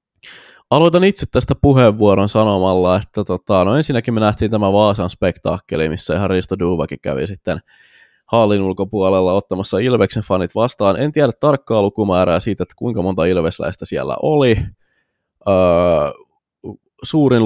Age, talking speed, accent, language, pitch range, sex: 20-39, 135 wpm, native, Finnish, 90-115 Hz, male